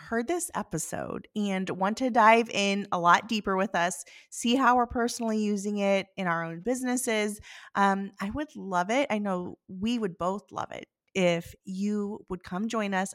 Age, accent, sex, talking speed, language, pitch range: 20-39, American, female, 185 wpm, English, 185-230 Hz